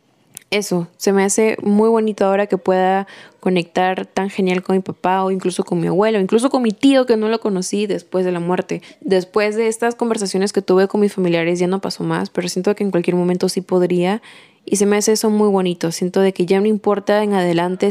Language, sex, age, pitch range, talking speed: Spanish, female, 10-29, 180-215 Hz, 230 wpm